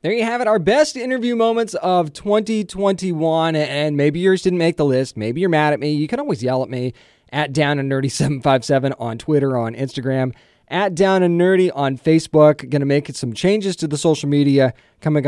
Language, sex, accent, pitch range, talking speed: English, male, American, 130-165 Hz, 195 wpm